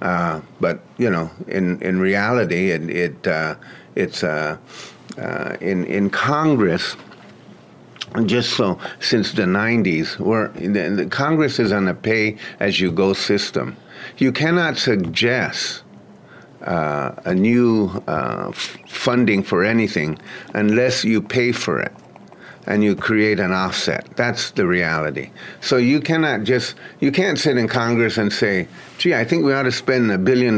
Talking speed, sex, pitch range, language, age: 145 wpm, male, 100-125 Hz, English, 50-69